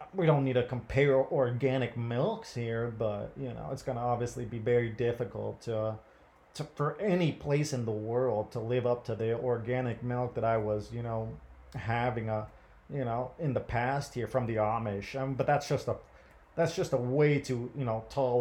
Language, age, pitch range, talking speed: English, 30-49, 115-140 Hz, 200 wpm